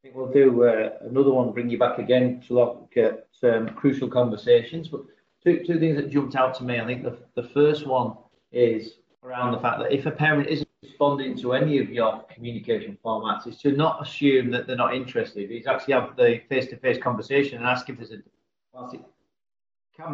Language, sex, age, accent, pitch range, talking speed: English, male, 40-59, British, 115-140 Hz, 210 wpm